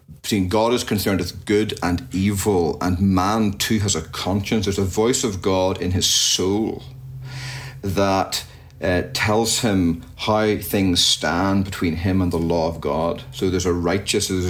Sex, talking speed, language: male, 165 wpm, English